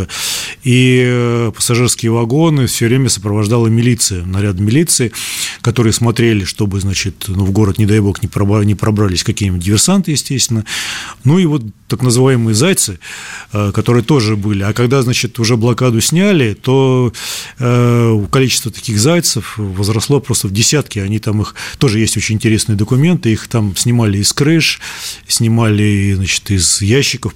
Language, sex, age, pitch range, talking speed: Russian, male, 20-39, 105-125 Hz, 140 wpm